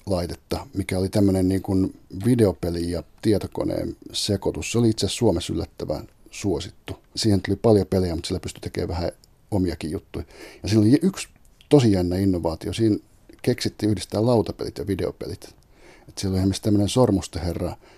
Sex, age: male, 50-69